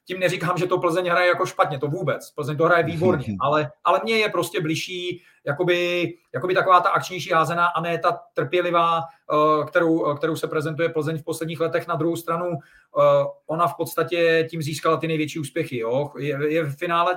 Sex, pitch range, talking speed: male, 160-180 Hz, 185 wpm